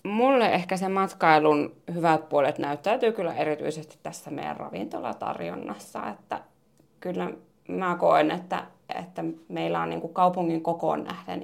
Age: 30-49